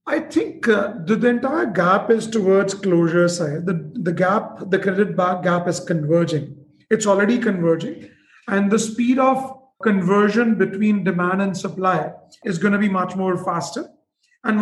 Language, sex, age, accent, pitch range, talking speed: English, male, 30-49, Indian, 190-230 Hz, 165 wpm